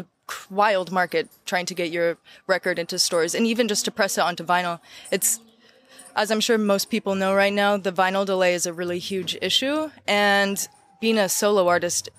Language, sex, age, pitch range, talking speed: German, female, 20-39, 175-205 Hz, 190 wpm